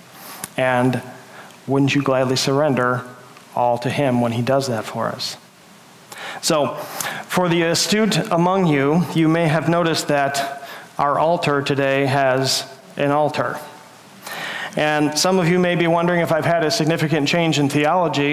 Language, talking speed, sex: English, 150 wpm, male